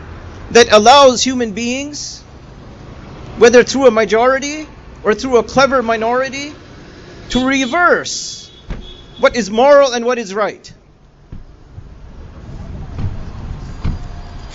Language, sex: English, male